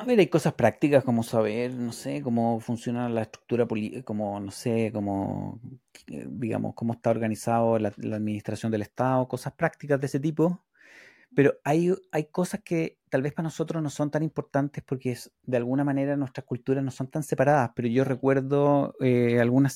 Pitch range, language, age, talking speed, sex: 115-135 Hz, Spanish, 30-49, 180 wpm, male